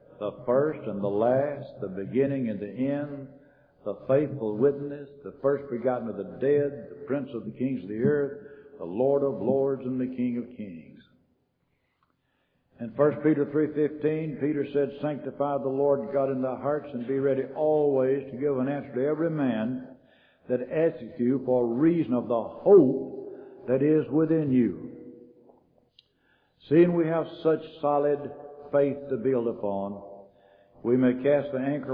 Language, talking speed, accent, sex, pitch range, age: English, 165 wpm, American, male, 125-145 Hz, 60-79